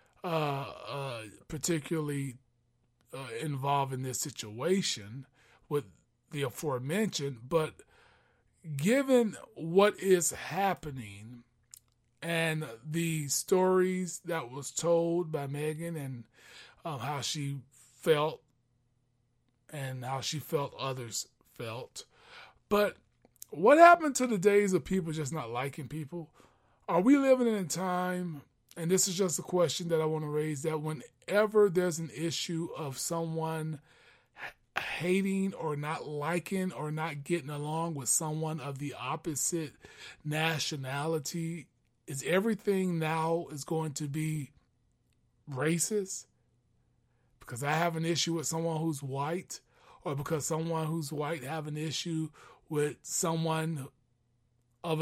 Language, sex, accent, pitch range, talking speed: English, male, American, 140-170 Hz, 125 wpm